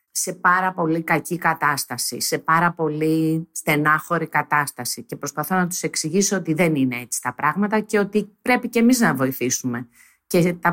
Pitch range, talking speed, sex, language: 155-225 Hz, 170 wpm, female, Greek